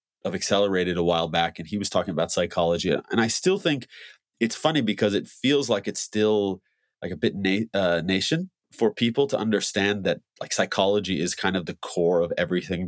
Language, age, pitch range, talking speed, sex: English, 30-49, 85-110 Hz, 195 wpm, male